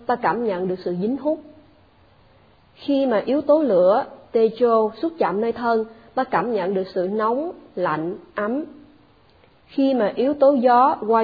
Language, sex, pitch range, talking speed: Vietnamese, female, 190-250 Hz, 165 wpm